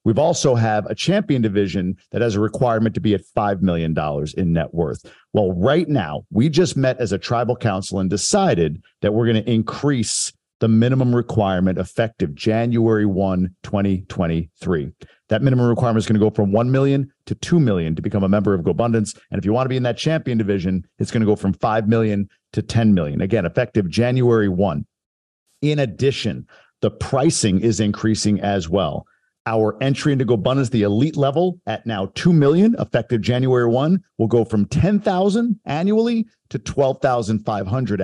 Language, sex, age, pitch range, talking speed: English, male, 50-69, 100-135 Hz, 180 wpm